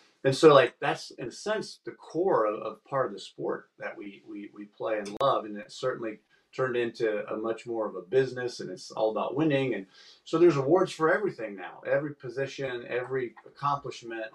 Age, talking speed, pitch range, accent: 40-59, 205 wpm, 105-135 Hz, American